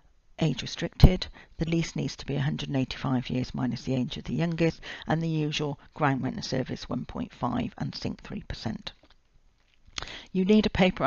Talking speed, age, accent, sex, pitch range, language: 155 wpm, 50-69, British, female, 145-170 Hz, English